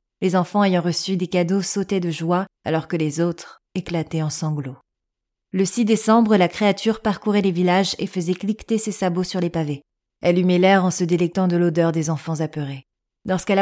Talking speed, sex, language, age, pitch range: 195 wpm, female, French, 30-49, 170-215 Hz